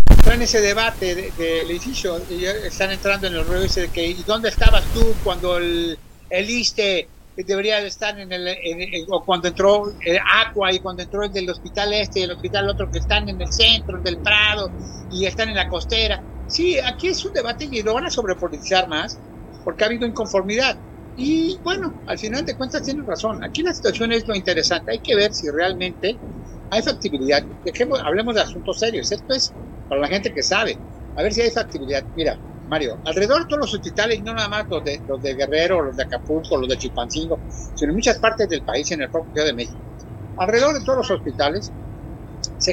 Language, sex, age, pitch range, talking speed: Spanish, male, 60-79, 155-220 Hz, 215 wpm